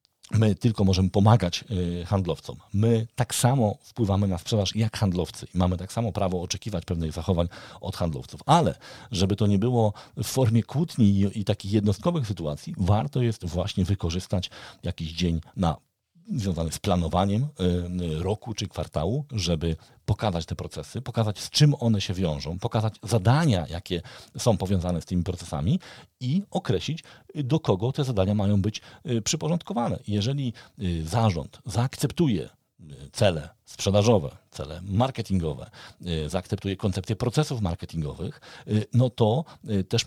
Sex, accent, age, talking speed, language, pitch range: male, native, 50-69, 135 wpm, Polish, 90-120 Hz